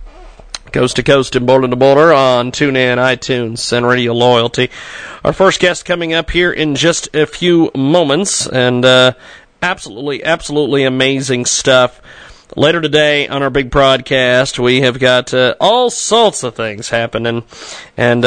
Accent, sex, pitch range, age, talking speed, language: American, male, 120-155 Hz, 40-59, 150 wpm, English